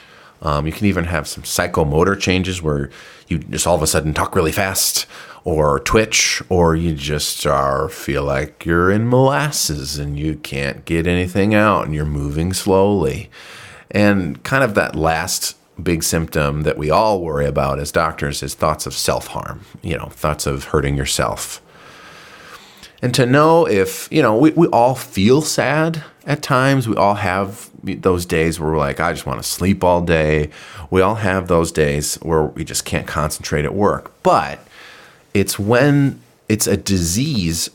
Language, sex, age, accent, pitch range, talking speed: English, male, 30-49, American, 75-100 Hz, 170 wpm